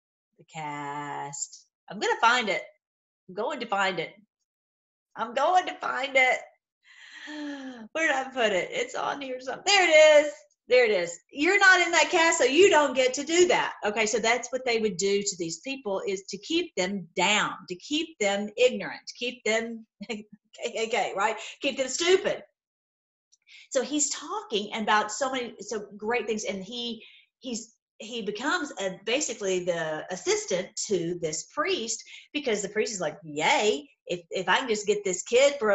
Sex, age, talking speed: female, 40-59, 175 wpm